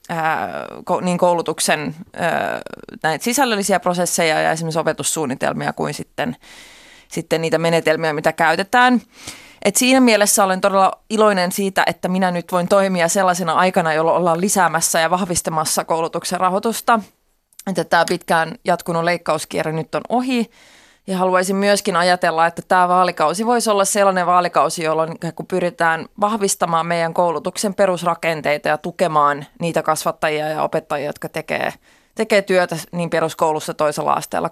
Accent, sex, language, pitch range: native, female, Finnish, 165-195 Hz